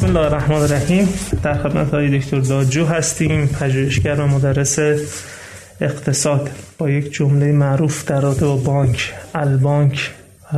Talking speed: 125 wpm